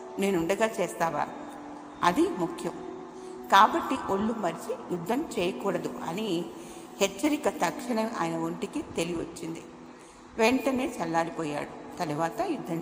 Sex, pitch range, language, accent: female, 170-260 Hz, Telugu, native